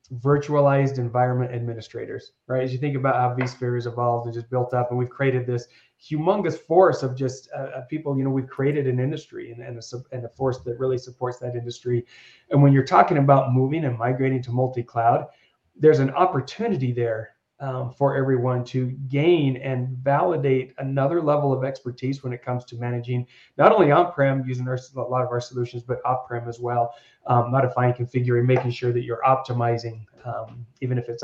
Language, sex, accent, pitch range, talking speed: English, male, American, 120-140 Hz, 190 wpm